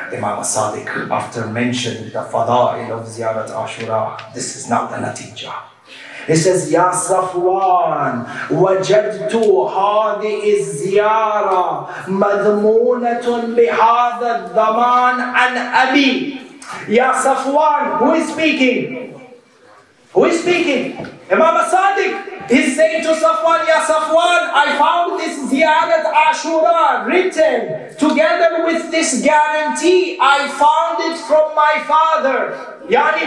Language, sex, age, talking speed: English, male, 30-49, 105 wpm